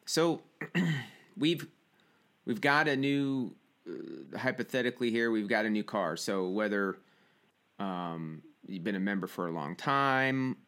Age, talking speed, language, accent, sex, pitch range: 30-49, 140 wpm, English, American, male, 95-125 Hz